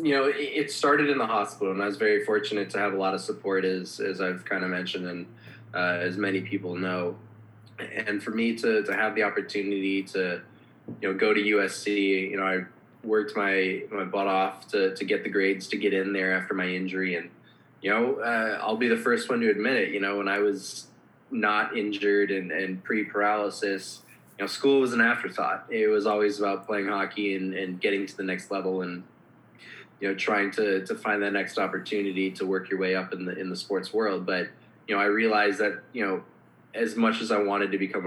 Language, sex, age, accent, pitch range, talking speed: English, male, 20-39, American, 95-105 Hz, 225 wpm